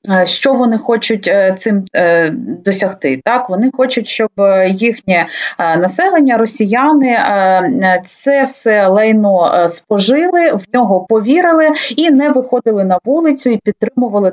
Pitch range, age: 185-255 Hz, 30-49